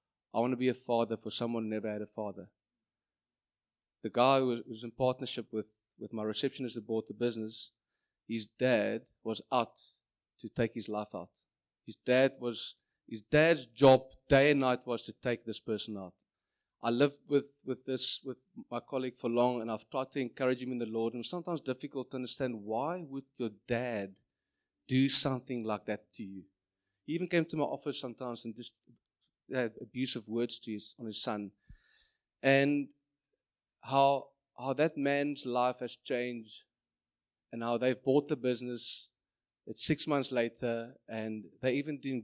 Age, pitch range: 30-49, 110-135 Hz